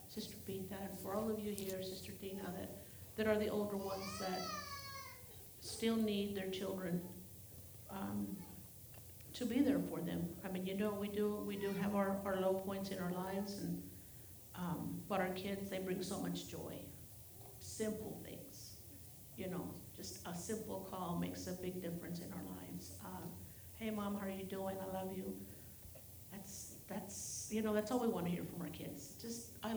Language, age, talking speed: English, 50-69, 185 wpm